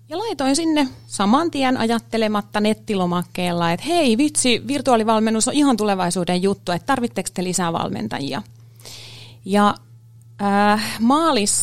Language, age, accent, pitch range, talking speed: Finnish, 30-49, native, 175-260 Hz, 115 wpm